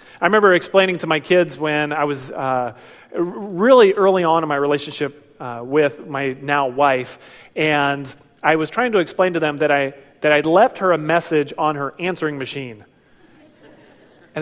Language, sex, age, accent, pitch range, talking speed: English, male, 30-49, American, 145-185 Hz, 175 wpm